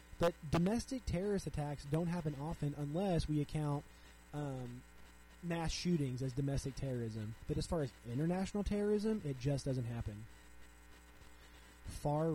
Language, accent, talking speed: English, American, 130 wpm